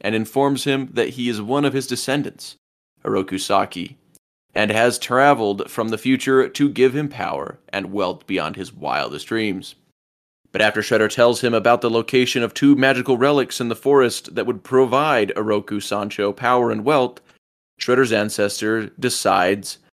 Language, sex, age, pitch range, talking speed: English, male, 30-49, 100-130 Hz, 160 wpm